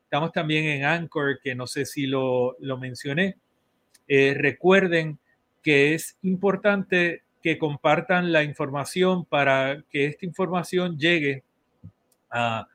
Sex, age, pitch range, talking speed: male, 40-59, 140-175 Hz, 120 wpm